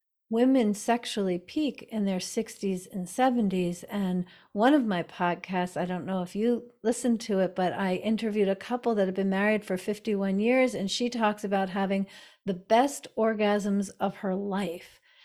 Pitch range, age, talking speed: 190-240 Hz, 50-69, 175 wpm